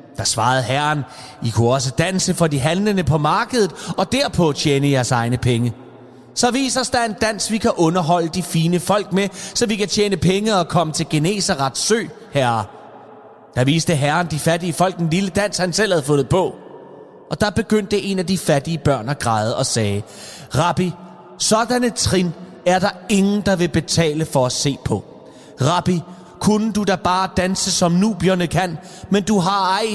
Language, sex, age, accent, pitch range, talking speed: Danish, male, 30-49, native, 135-195 Hz, 190 wpm